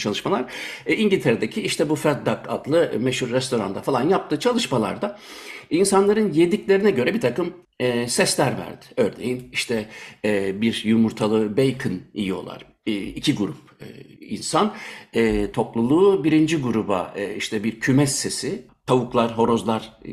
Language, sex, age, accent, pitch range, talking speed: Turkish, male, 60-79, native, 115-160 Hz, 125 wpm